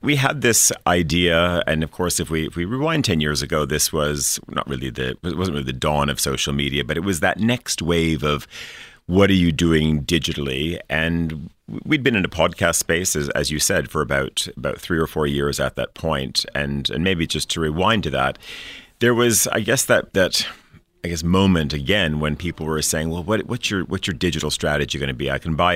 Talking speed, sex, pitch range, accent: 225 wpm, male, 75-90 Hz, American